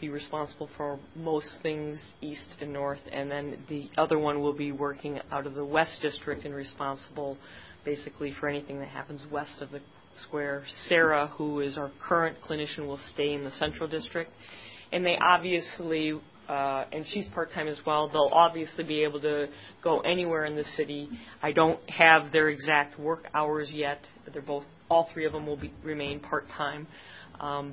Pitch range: 140-155 Hz